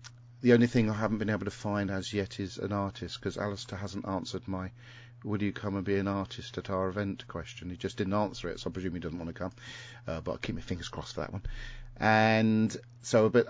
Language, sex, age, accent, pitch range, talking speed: English, male, 40-59, British, 95-120 Hz, 255 wpm